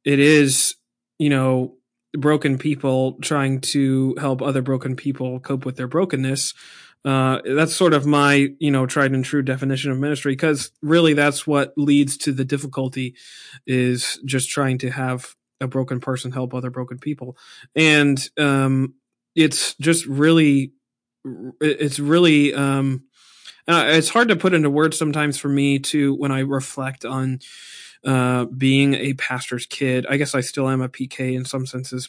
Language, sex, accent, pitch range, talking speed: English, male, American, 130-150 Hz, 165 wpm